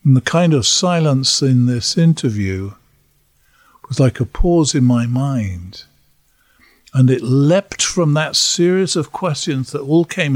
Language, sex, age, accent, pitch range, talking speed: English, male, 50-69, British, 125-160 Hz, 150 wpm